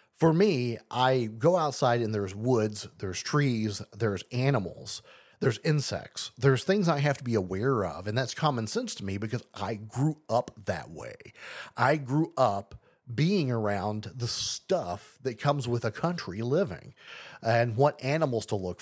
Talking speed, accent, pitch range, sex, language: 165 wpm, American, 110-140 Hz, male, English